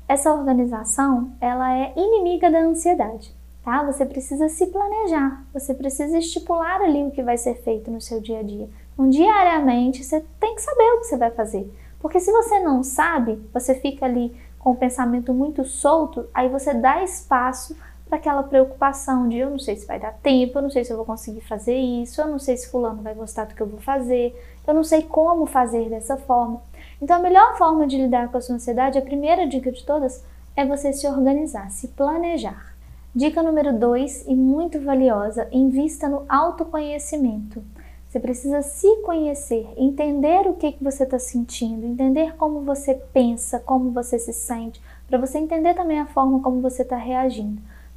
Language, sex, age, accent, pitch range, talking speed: Portuguese, female, 10-29, Brazilian, 245-300 Hz, 190 wpm